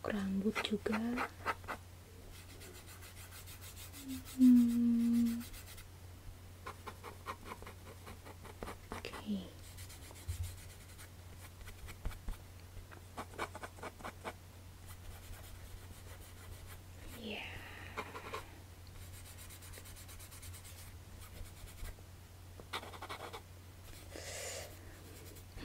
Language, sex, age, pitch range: English, female, 30-49, 90-115 Hz